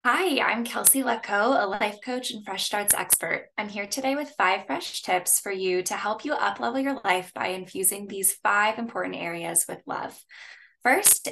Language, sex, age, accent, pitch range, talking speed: English, female, 10-29, American, 185-230 Hz, 185 wpm